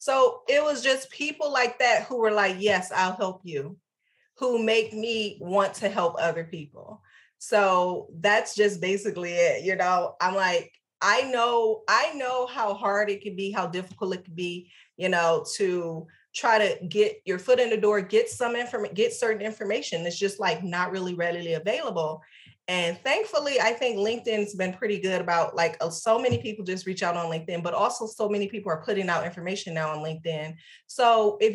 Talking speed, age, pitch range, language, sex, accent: 195 wpm, 30-49, 175-225 Hz, English, female, American